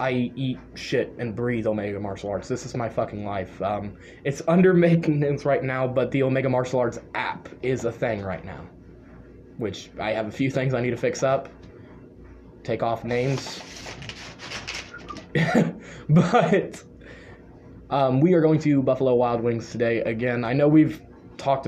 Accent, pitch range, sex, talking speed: American, 115-155 Hz, male, 165 wpm